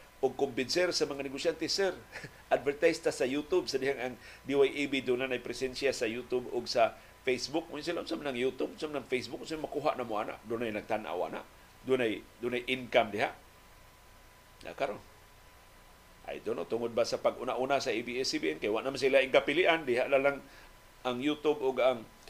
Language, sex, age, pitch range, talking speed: Filipino, male, 50-69, 125-150 Hz, 170 wpm